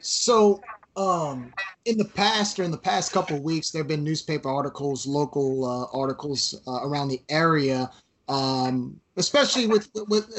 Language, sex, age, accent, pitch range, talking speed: English, male, 30-49, American, 150-195 Hz, 160 wpm